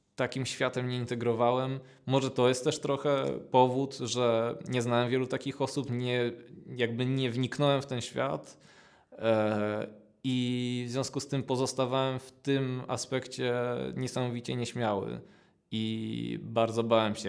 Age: 20-39